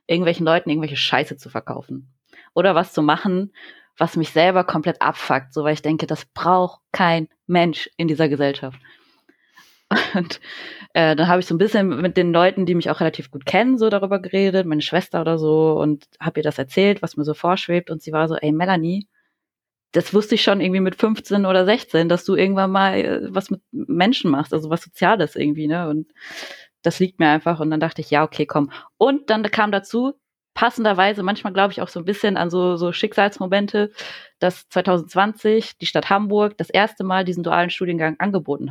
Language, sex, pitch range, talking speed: German, female, 160-200 Hz, 195 wpm